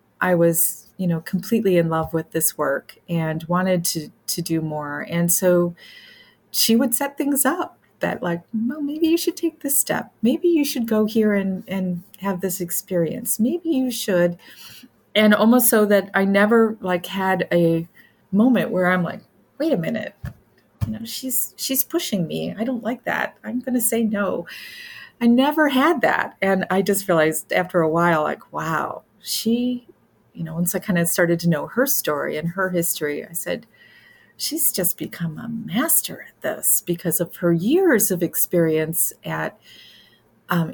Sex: female